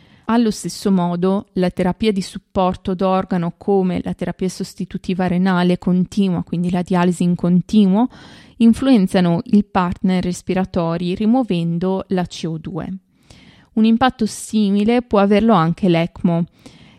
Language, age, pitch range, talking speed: Italian, 20-39, 175-210 Hz, 115 wpm